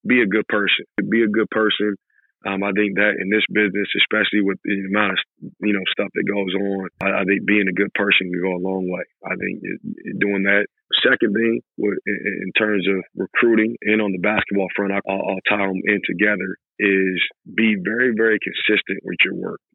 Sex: male